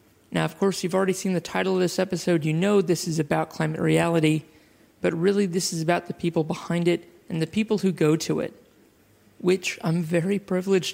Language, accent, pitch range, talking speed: English, American, 155-185 Hz, 210 wpm